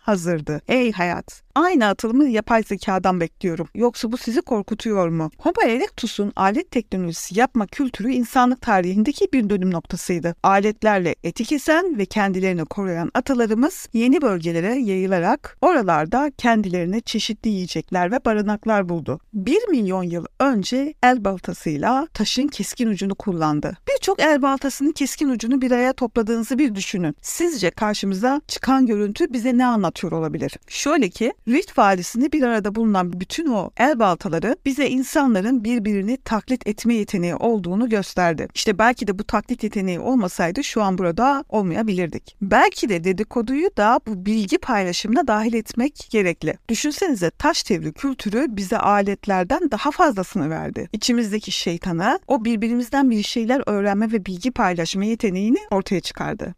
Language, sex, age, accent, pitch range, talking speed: Turkish, female, 50-69, native, 195-260 Hz, 135 wpm